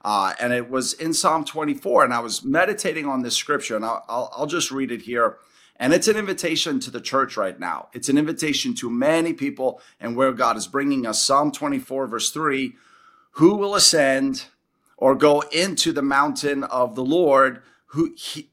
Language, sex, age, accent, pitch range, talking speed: English, male, 40-59, American, 130-165 Hz, 190 wpm